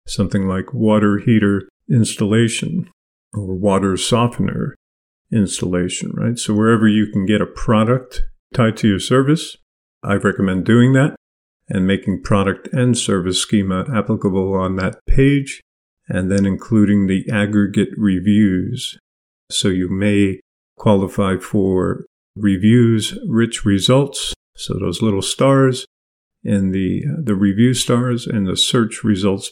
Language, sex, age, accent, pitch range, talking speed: English, male, 50-69, American, 100-120 Hz, 125 wpm